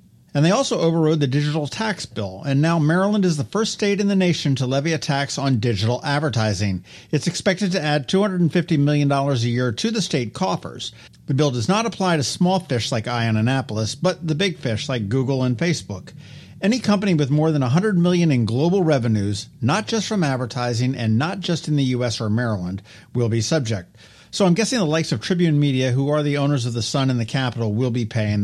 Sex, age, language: male, 50-69, English